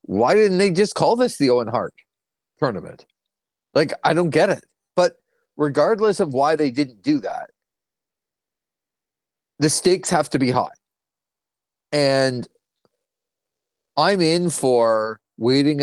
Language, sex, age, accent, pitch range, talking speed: English, male, 40-59, American, 125-155 Hz, 130 wpm